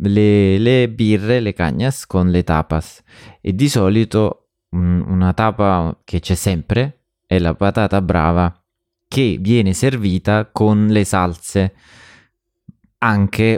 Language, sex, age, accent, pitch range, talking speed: Italian, male, 20-39, native, 90-110 Hz, 125 wpm